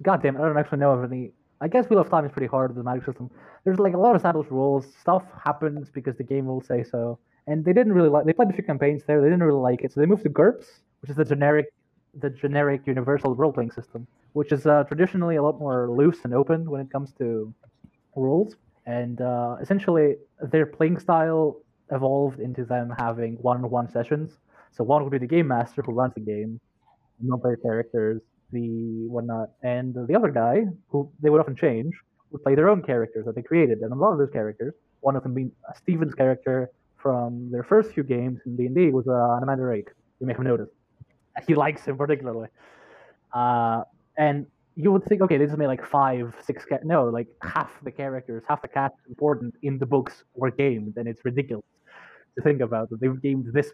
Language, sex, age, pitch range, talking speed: English, male, 20-39, 120-150 Hz, 220 wpm